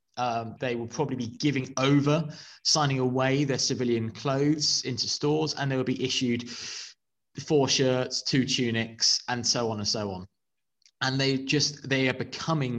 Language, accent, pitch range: English, British, 115-140 Hz